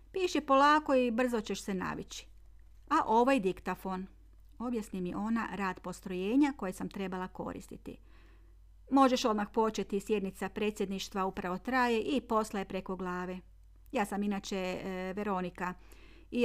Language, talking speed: Croatian, 135 wpm